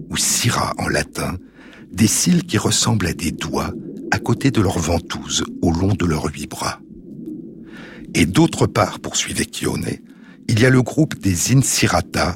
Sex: male